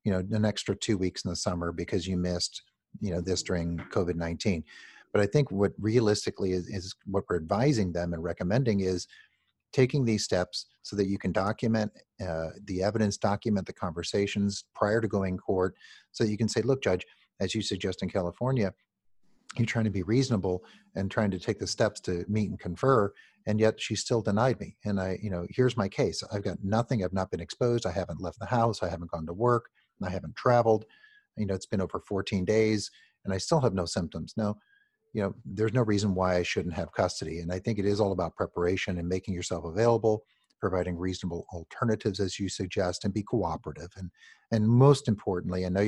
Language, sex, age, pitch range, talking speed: English, male, 40-59, 90-110 Hz, 210 wpm